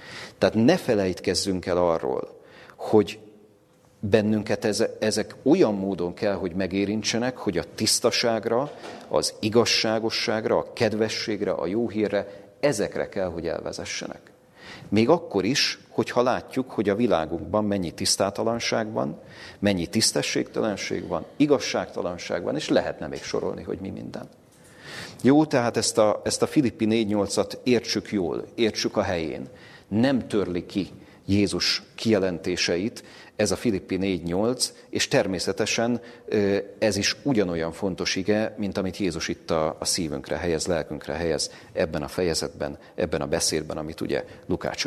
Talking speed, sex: 125 wpm, male